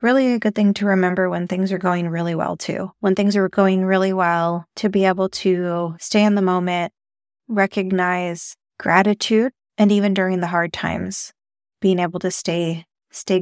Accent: American